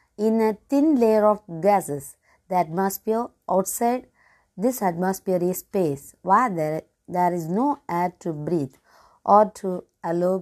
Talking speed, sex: 125 wpm, female